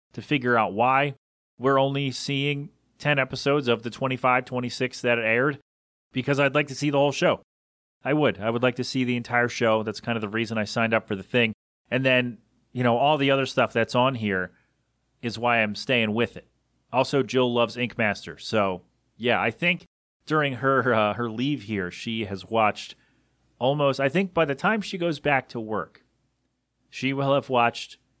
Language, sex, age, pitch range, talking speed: English, male, 30-49, 110-135 Hz, 200 wpm